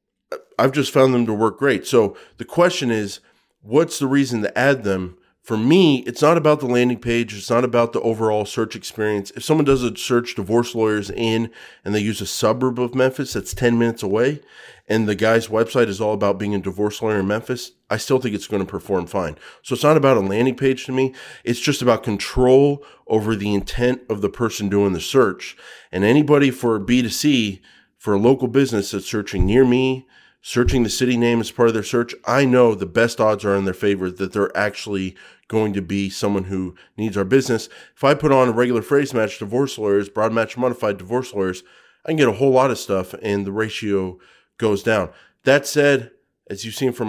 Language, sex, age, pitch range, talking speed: English, male, 30-49, 105-130 Hz, 220 wpm